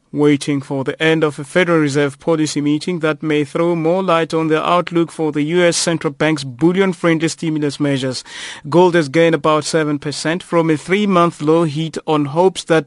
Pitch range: 145-170 Hz